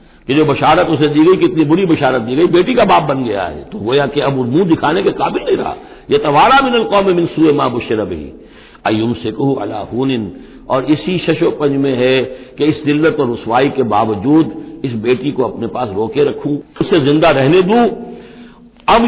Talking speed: 200 wpm